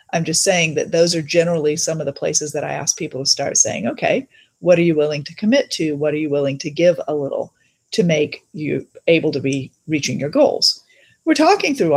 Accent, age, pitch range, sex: American, 40-59, 160-235 Hz, female